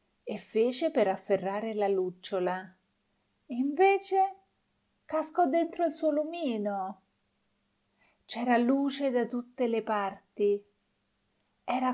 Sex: female